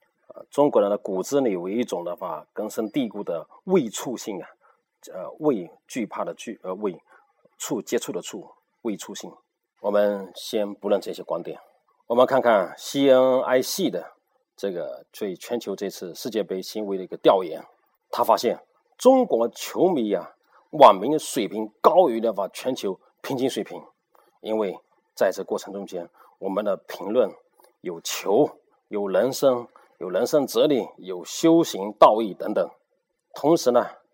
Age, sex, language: 40-59, male, Chinese